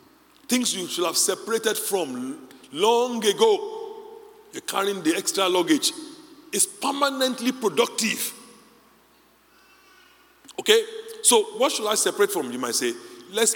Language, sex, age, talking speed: English, male, 50-69, 120 wpm